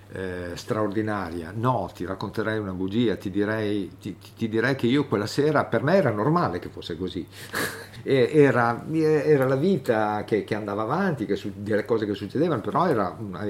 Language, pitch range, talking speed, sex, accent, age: Italian, 90-105 Hz, 175 wpm, male, native, 50-69